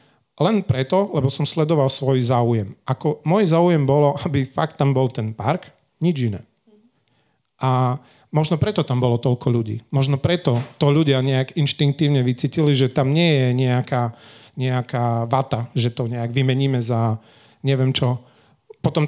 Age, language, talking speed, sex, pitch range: 40-59, Slovak, 150 wpm, male, 125-150 Hz